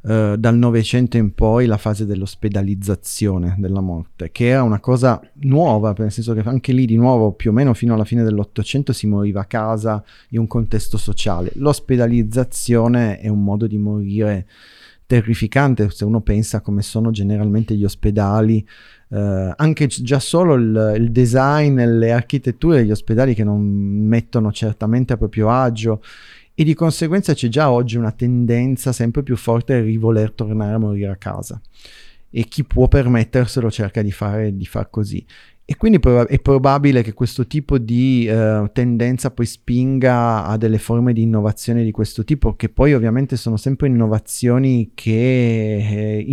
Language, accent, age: Italian, native, 30-49